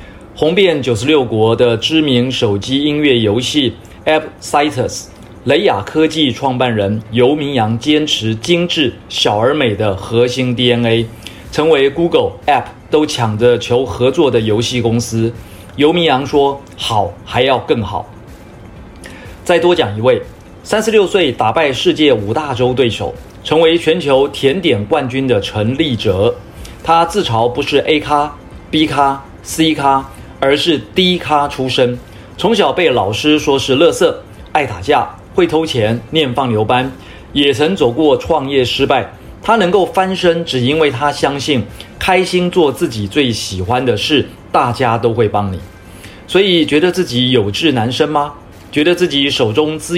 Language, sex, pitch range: Chinese, male, 110-155 Hz